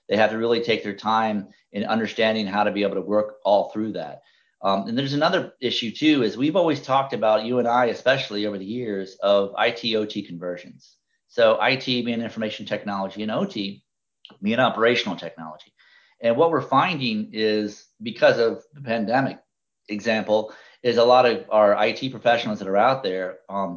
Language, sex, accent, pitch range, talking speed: English, male, American, 100-120 Hz, 180 wpm